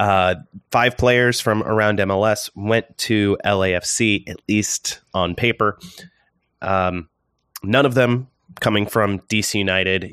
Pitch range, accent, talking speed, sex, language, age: 90-110 Hz, American, 125 wpm, male, English, 30-49